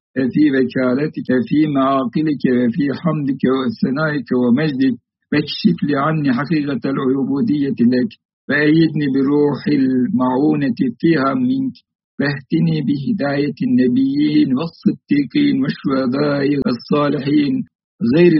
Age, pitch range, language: 60-79, 125-155 Hz, Turkish